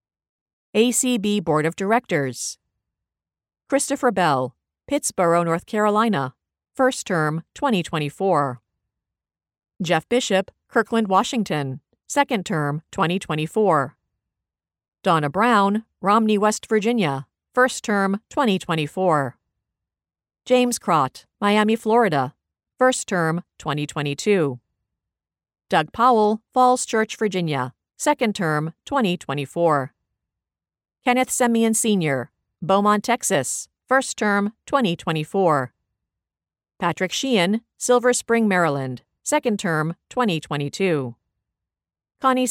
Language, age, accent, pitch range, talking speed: English, 50-69, American, 150-225 Hz, 85 wpm